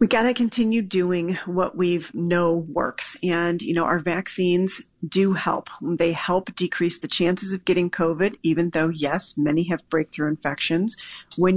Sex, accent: female, American